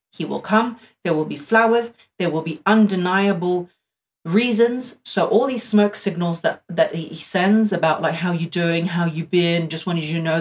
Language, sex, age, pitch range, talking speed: English, female, 30-49, 160-200 Hz, 195 wpm